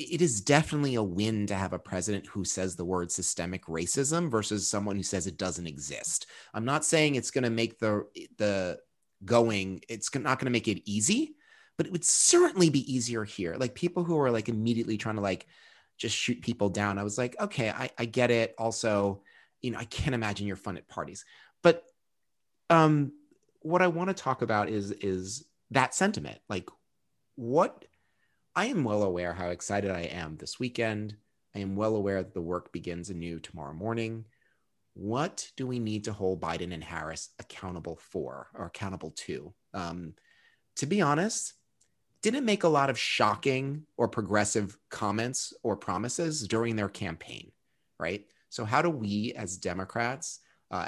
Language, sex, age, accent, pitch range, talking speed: English, male, 30-49, American, 95-130 Hz, 175 wpm